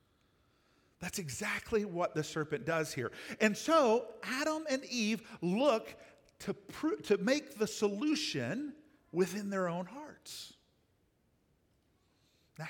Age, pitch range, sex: 50-69, 185-270 Hz, male